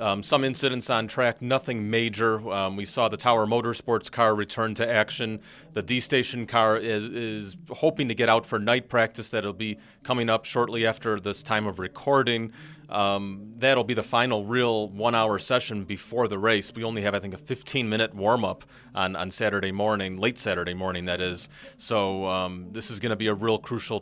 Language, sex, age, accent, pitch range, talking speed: English, male, 30-49, American, 95-115 Hz, 190 wpm